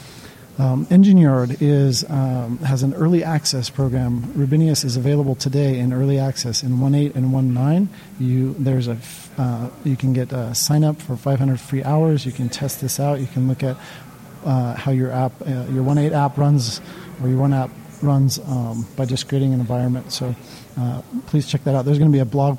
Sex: male